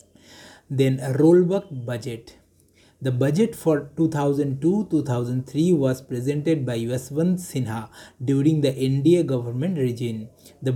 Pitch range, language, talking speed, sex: 125-145 Hz, English, 105 wpm, male